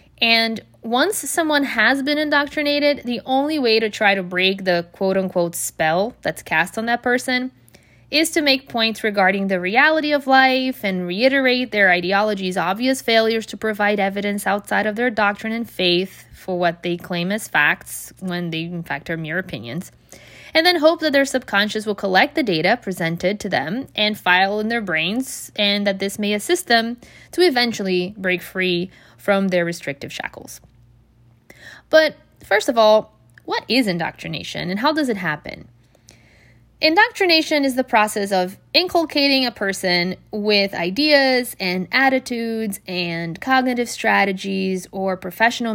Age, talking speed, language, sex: 20-39, 155 wpm, English, female